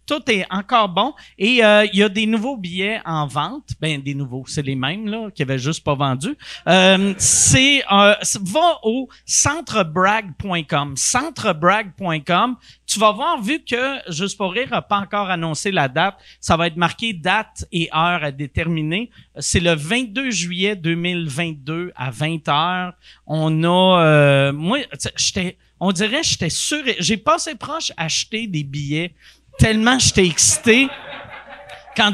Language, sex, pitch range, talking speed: French, male, 155-230 Hz, 155 wpm